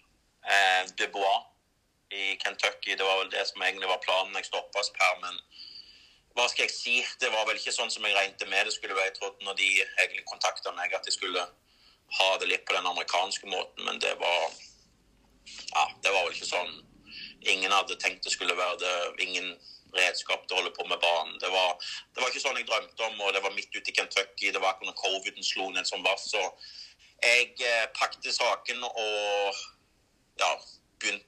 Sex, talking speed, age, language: male, 200 wpm, 30-49, Danish